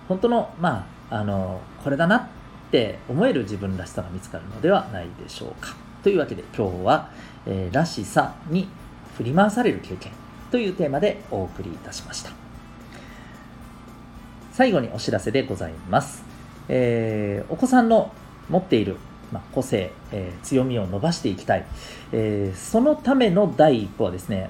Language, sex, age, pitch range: Japanese, male, 40-59, 105-170 Hz